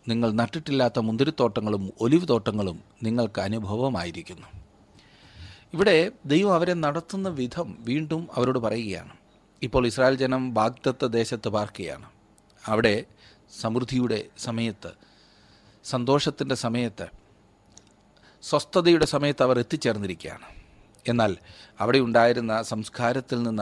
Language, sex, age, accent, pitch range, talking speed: Malayalam, male, 40-59, native, 105-135 Hz, 90 wpm